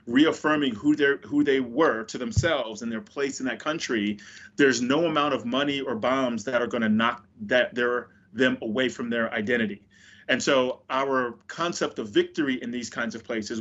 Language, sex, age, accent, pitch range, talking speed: English, male, 30-49, American, 115-140 Hz, 195 wpm